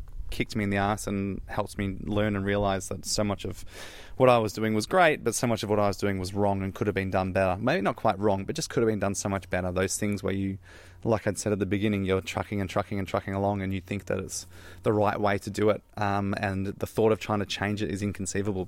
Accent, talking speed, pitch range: Australian, 285 wpm, 95-110 Hz